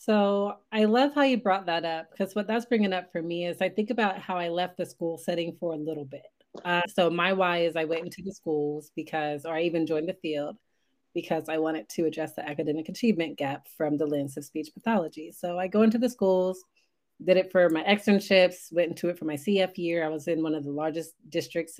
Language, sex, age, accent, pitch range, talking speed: English, female, 30-49, American, 155-185 Hz, 240 wpm